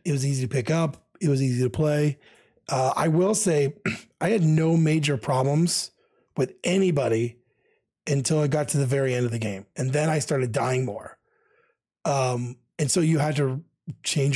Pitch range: 135-165 Hz